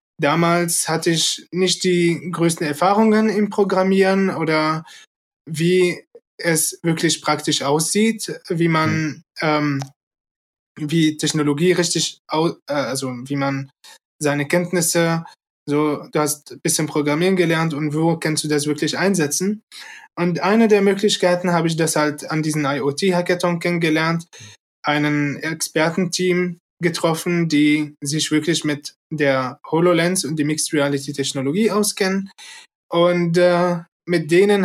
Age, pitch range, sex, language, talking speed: 20-39, 150-175 Hz, male, German, 125 wpm